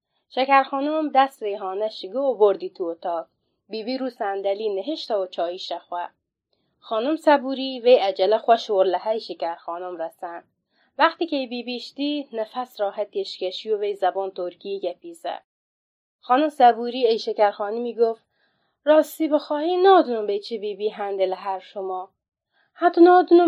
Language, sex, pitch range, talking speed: Persian, female, 195-270 Hz, 130 wpm